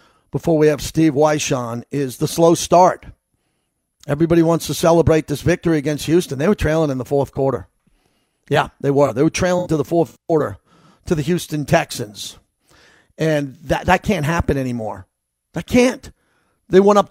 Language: English